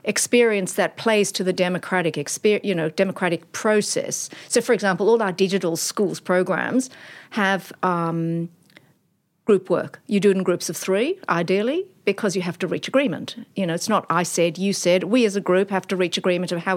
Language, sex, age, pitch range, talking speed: English, female, 50-69, 180-220 Hz, 195 wpm